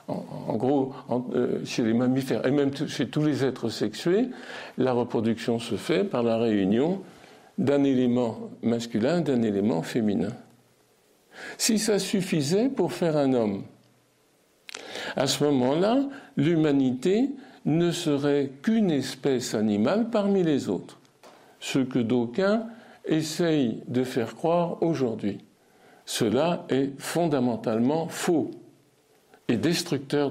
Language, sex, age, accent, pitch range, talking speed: French, male, 60-79, French, 130-190 Hz, 115 wpm